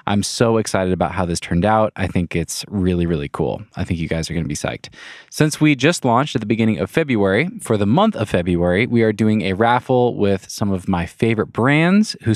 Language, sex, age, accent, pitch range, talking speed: English, male, 20-39, American, 95-130 Hz, 235 wpm